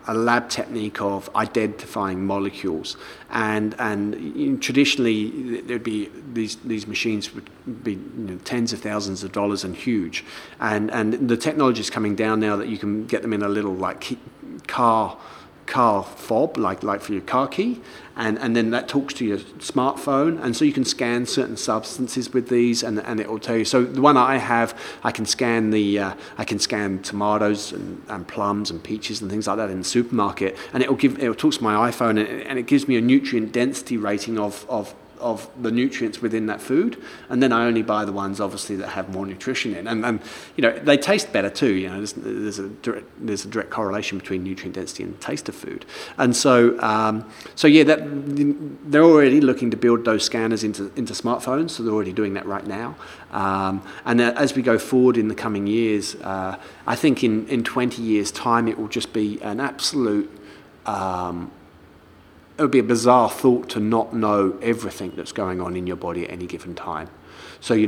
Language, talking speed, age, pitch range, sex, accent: English, 210 wpm, 40-59, 100-120 Hz, male, British